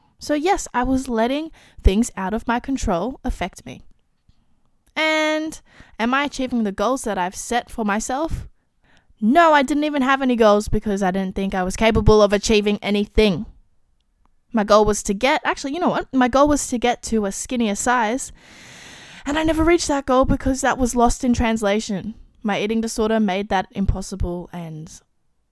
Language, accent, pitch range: English, Australian, 200-260 Hz